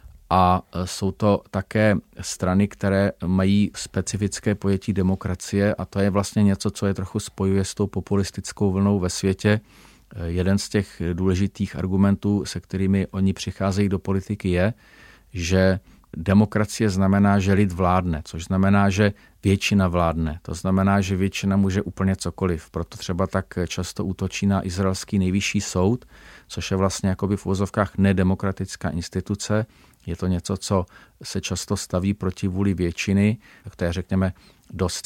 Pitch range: 90-100 Hz